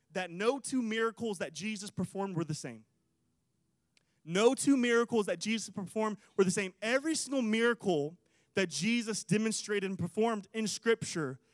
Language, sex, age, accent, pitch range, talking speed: English, male, 20-39, American, 185-235 Hz, 150 wpm